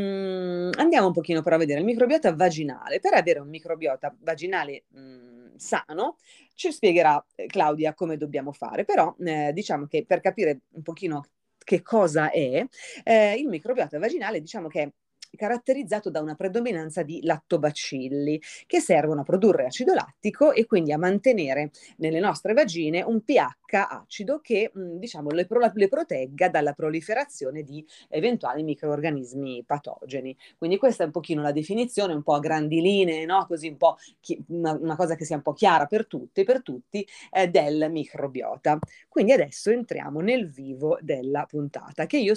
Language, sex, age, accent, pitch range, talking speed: Italian, female, 30-49, native, 150-195 Hz, 160 wpm